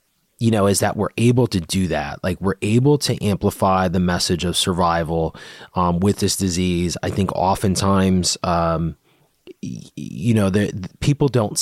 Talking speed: 155 wpm